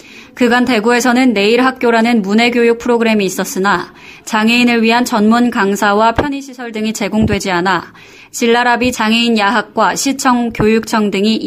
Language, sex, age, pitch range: Korean, female, 20-39, 210-245 Hz